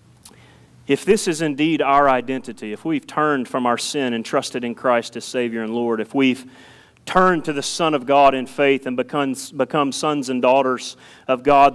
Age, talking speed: 30-49, 190 wpm